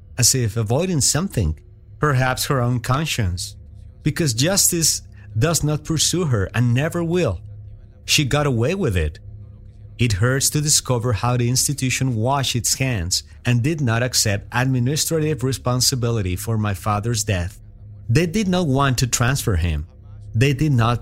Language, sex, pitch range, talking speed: English, male, 105-130 Hz, 150 wpm